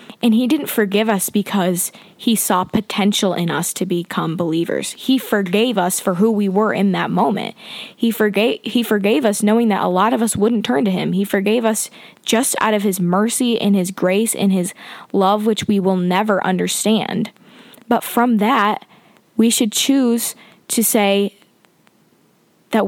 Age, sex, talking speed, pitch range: 20-39, female, 175 wpm, 195-225 Hz